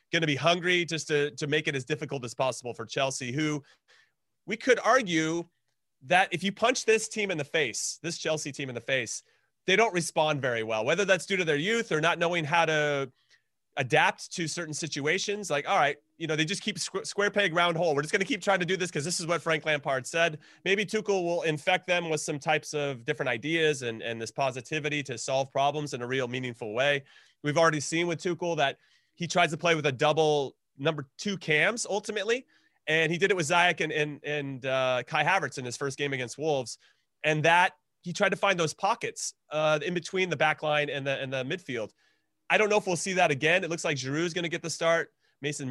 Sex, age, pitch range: male, 30-49, 140-175 Hz